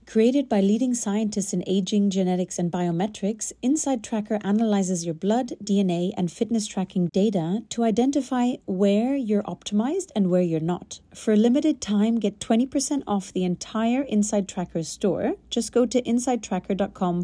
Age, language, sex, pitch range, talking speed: 30-49, English, female, 180-230 Hz, 155 wpm